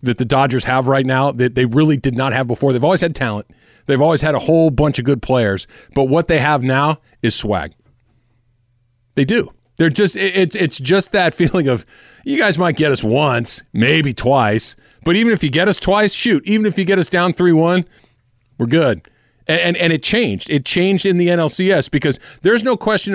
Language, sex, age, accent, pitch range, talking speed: English, male, 40-59, American, 120-165 Hz, 215 wpm